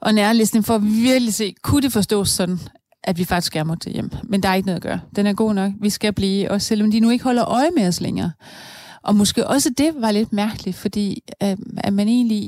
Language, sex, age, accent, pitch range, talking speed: Danish, female, 30-49, native, 190-230 Hz, 245 wpm